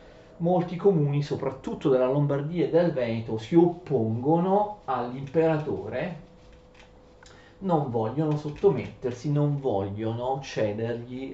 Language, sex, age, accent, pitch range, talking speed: Italian, male, 40-59, native, 120-170 Hz, 90 wpm